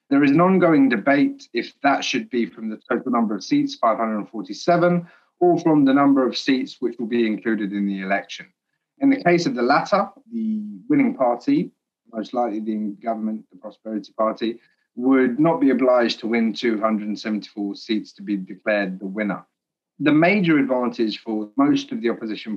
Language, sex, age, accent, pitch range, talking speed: English, male, 30-49, British, 105-150 Hz, 175 wpm